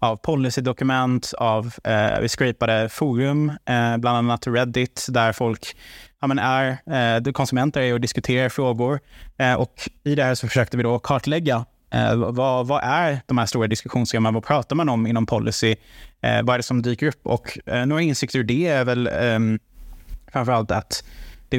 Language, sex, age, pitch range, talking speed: Swedish, male, 20-39, 115-135 Hz, 180 wpm